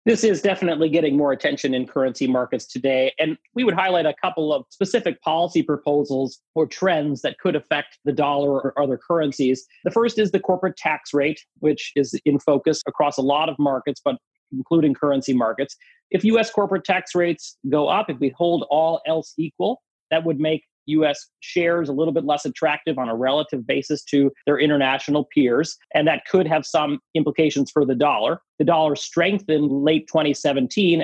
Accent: American